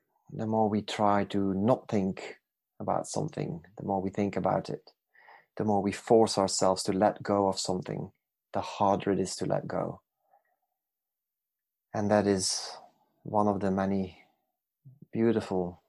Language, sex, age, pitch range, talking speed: English, male, 30-49, 95-105 Hz, 150 wpm